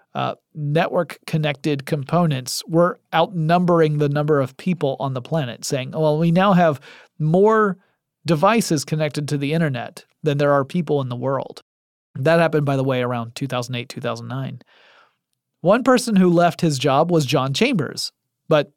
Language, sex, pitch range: English, male, 135-175 Hz